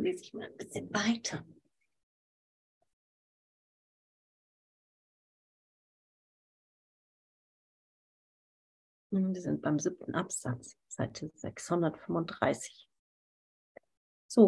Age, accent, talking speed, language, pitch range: 40-59, German, 50 wpm, German, 170-215 Hz